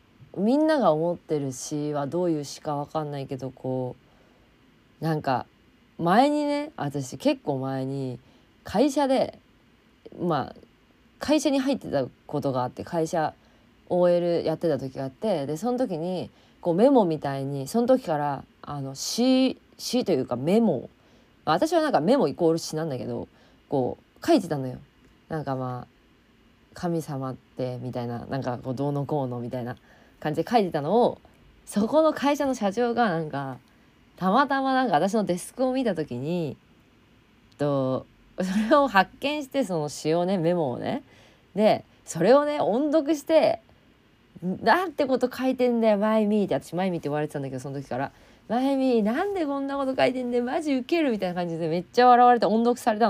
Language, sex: Japanese, female